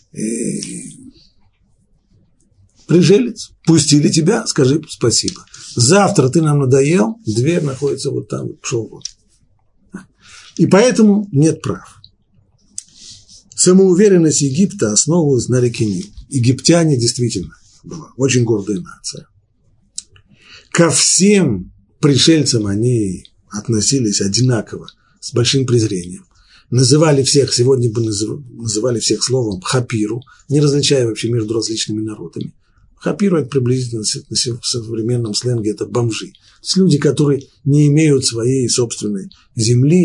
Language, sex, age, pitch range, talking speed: Russian, male, 50-69, 110-145 Hz, 110 wpm